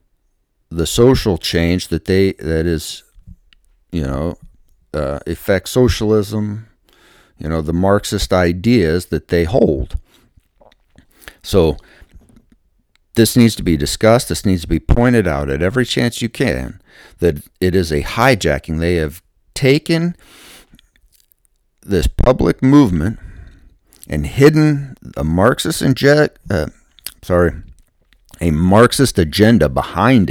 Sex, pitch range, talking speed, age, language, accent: male, 80-120 Hz, 115 wpm, 50-69, English, American